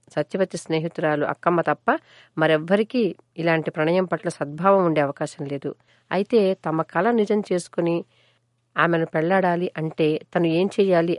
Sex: female